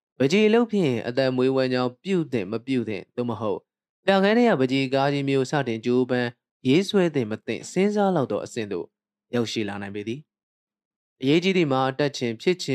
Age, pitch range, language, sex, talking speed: 20-39, 110-145 Hz, English, male, 50 wpm